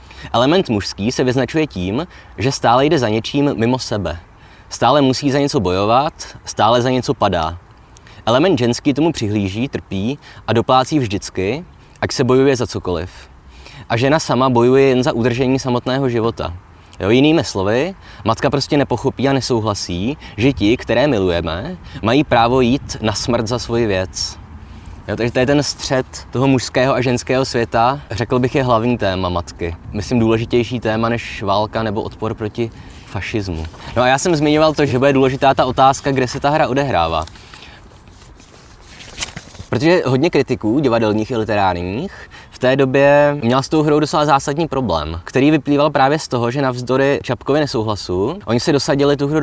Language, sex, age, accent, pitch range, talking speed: Czech, male, 20-39, native, 100-135 Hz, 165 wpm